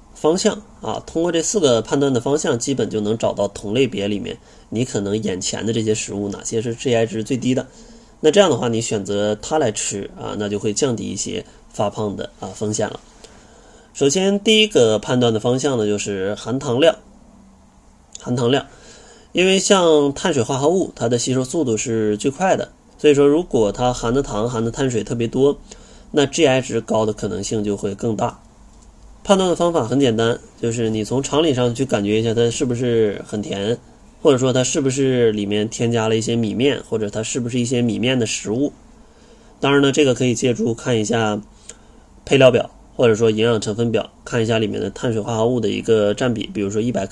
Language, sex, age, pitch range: Chinese, male, 20-39, 110-140 Hz